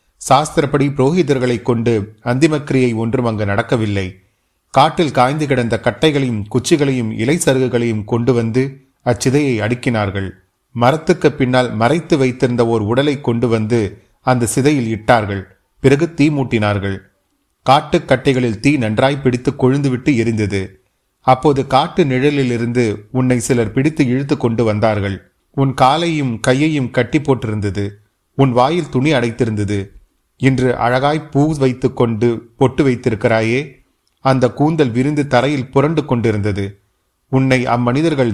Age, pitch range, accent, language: 30-49, 110-135 Hz, native, Tamil